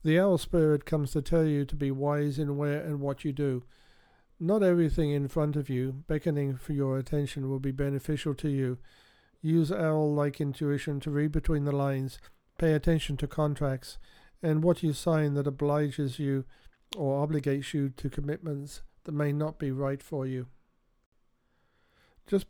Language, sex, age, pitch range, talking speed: English, male, 50-69, 135-155 Hz, 170 wpm